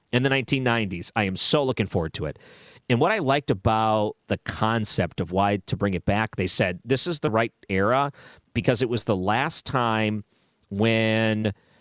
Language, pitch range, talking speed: English, 100-125 Hz, 190 wpm